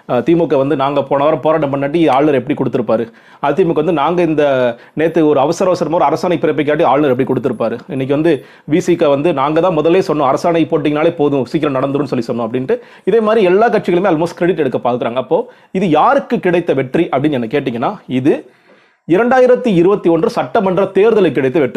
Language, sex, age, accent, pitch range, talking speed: Tamil, male, 30-49, native, 145-185 Hz, 60 wpm